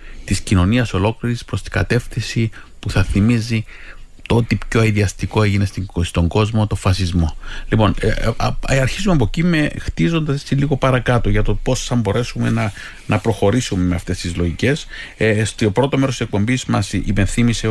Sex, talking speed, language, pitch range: male, 150 wpm, Greek, 95-115 Hz